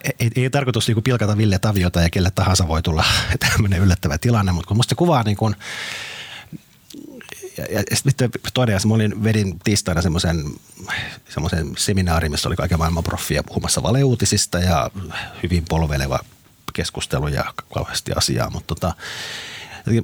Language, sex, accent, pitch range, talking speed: Finnish, male, native, 85-110 Hz, 145 wpm